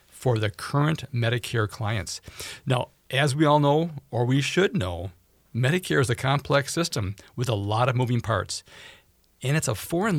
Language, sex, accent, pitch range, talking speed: English, male, American, 110-140 Hz, 170 wpm